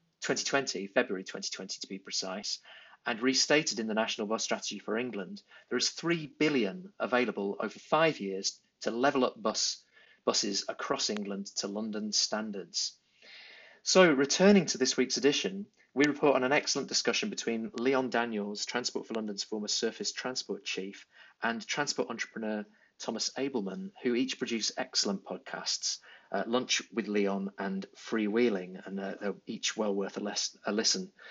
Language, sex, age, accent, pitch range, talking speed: English, male, 30-49, British, 110-160 Hz, 155 wpm